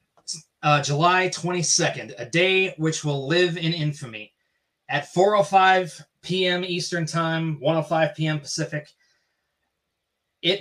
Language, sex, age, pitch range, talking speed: English, male, 20-39, 150-180 Hz, 120 wpm